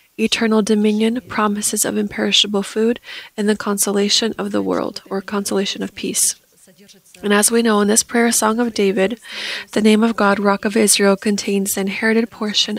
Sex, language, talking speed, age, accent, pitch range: female, English, 175 wpm, 20-39, American, 195-220 Hz